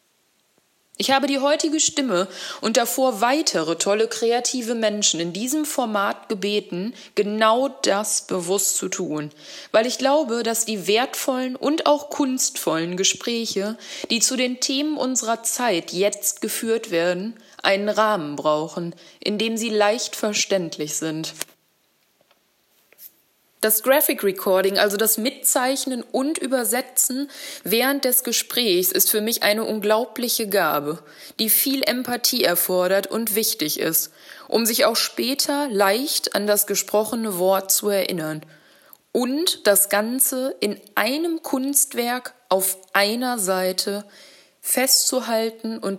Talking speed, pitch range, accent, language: 125 wpm, 195-260 Hz, German, German